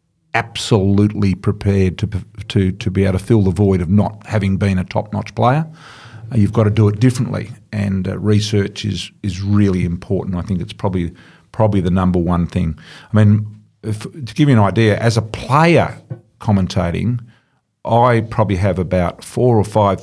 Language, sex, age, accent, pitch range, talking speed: English, male, 50-69, Australian, 95-110 Hz, 180 wpm